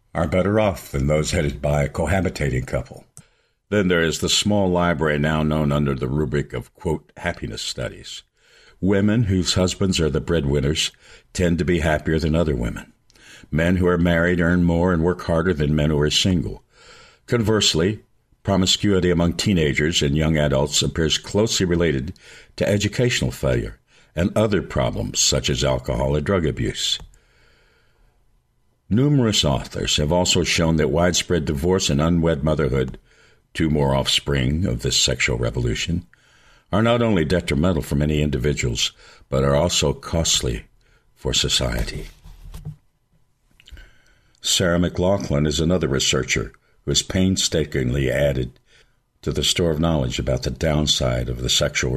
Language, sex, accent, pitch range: English, male, American, 70-90 Hz